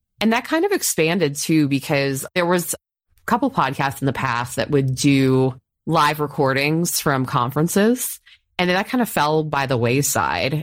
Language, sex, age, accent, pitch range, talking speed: English, female, 20-39, American, 130-160 Hz, 175 wpm